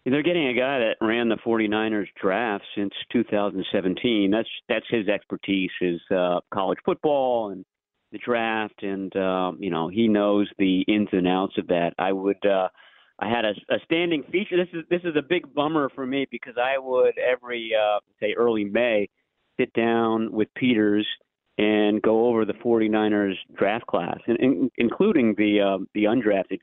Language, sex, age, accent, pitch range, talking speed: English, male, 50-69, American, 100-135 Hz, 175 wpm